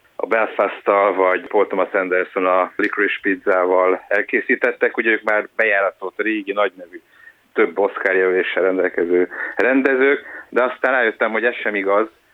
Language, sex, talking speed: Hungarian, male, 130 wpm